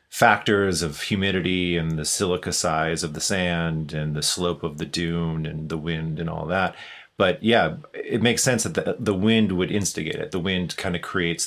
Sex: male